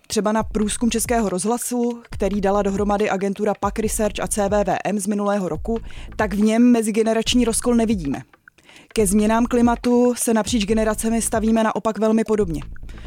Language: Czech